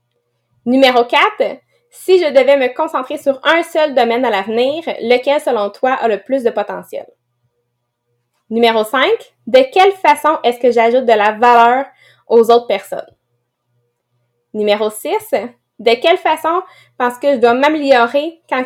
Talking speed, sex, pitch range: 150 wpm, female, 195-275 Hz